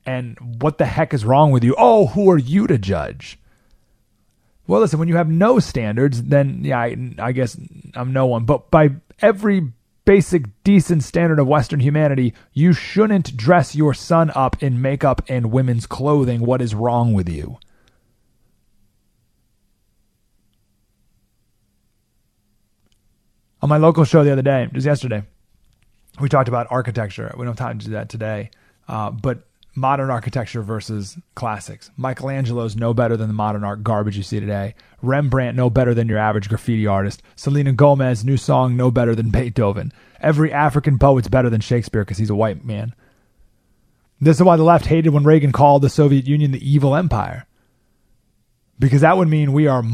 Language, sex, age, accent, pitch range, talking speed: English, male, 30-49, American, 110-145 Hz, 170 wpm